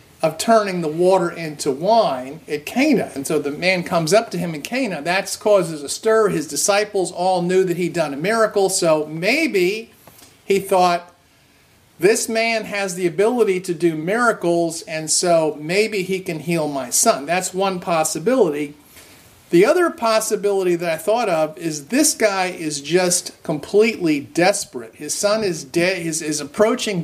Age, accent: 50-69, American